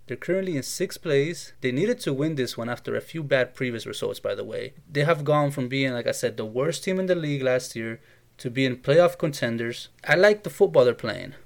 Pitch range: 120-150 Hz